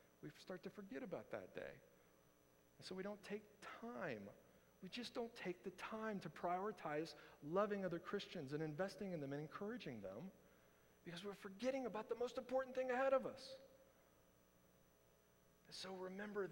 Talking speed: 165 wpm